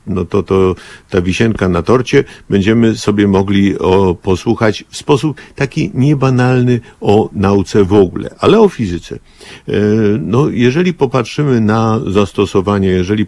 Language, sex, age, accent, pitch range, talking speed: Polish, male, 50-69, native, 95-115 Hz, 130 wpm